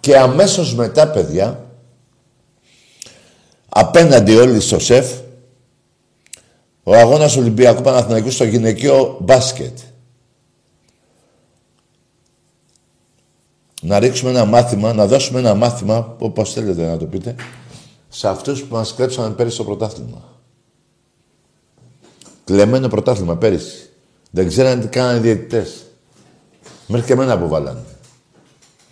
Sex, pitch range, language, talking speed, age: male, 115-145 Hz, Greek, 100 wpm, 50-69